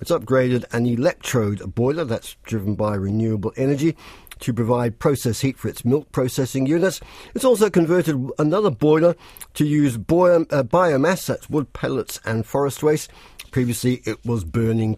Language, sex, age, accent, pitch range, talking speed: English, male, 50-69, British, 120-150 Hz, 150 wpm